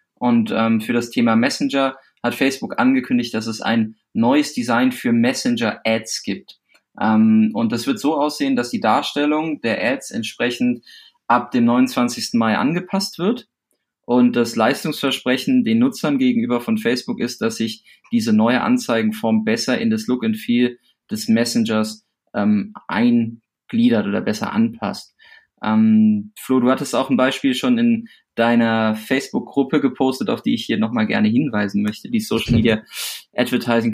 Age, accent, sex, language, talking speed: 20-39, German, male, German, 150 wpm